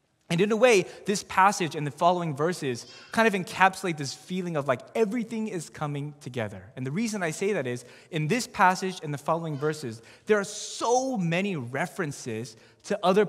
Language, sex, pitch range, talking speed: English, male, 135-195 Hz, 190 wpm